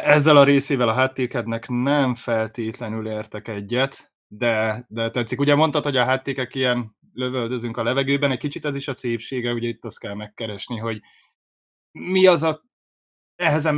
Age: 20-39